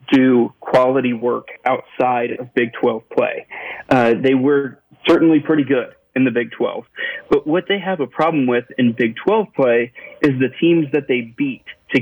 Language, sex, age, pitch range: English, male, 40-59, 125-150 Hz